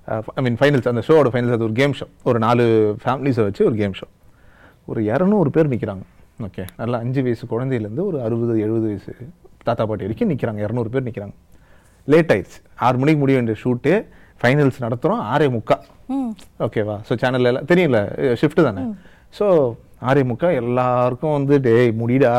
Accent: native